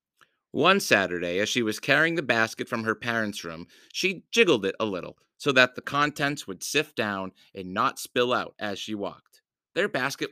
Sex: male